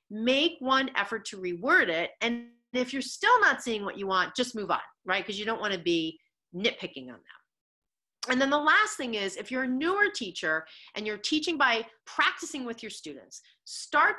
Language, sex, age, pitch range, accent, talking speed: English, female, 40-59, 175-270 Hz, American, 205 wpm